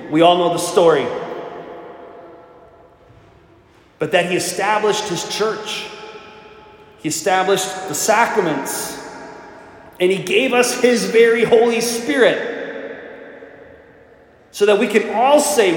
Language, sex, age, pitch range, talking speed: English, male, 30-49, 170-235 Hz, 110 wpm